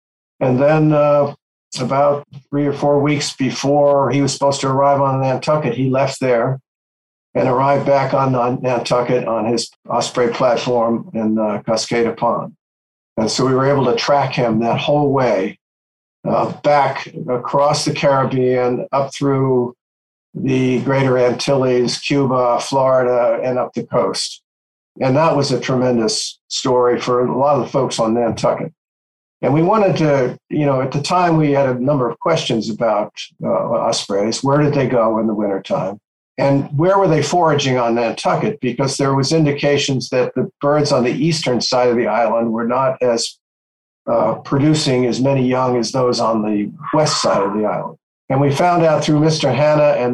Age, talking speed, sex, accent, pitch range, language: 50-69, 175 wpm, male, American, 120-140 Hz, English